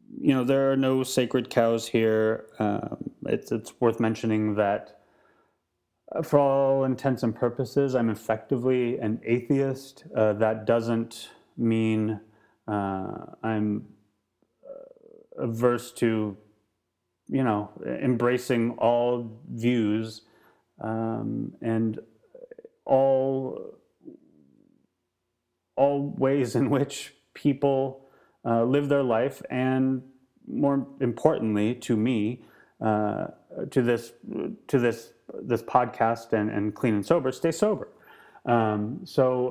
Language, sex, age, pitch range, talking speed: English, male, 30-49, 110-135 Hz, 105 wpm